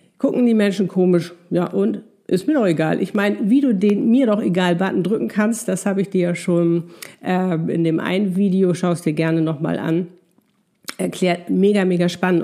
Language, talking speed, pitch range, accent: German, 195 wpm, 175-210 Hz, German